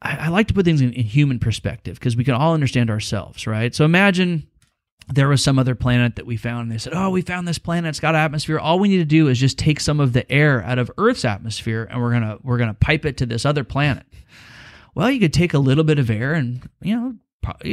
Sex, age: male, 30-49